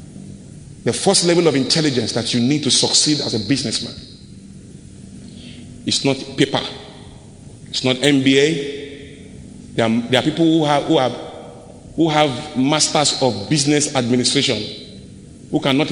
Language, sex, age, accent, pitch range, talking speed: English, male, 30-49, Nigerian, 130-185 Hz, 135 wpm